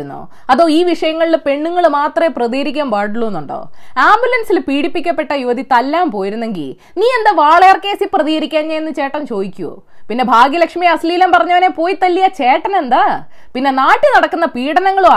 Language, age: Malayalam, 20-39